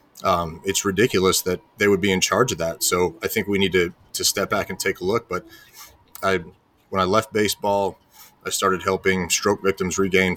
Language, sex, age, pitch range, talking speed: English, male, 30-49, 90-100 Hz, 210 wpm